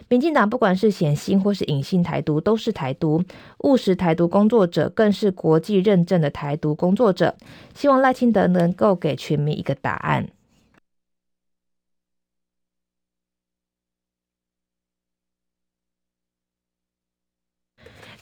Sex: female